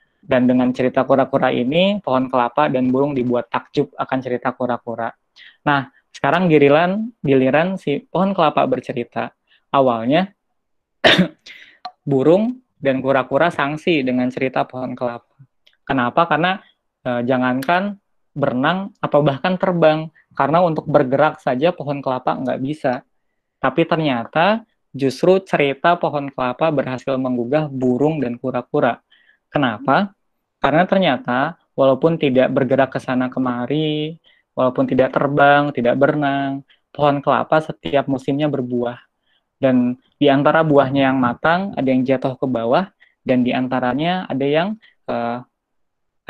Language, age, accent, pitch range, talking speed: Indonesian, 20-39, native, 130-155 Hz, 120 wpm